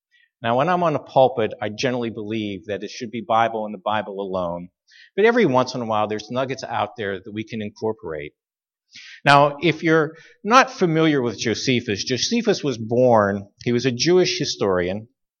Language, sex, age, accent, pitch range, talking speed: English, male, 50-69, American, 110-155 Hz, 185 wpm